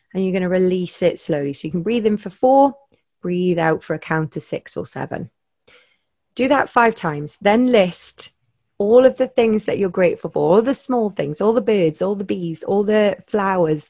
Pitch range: 170-220 Hz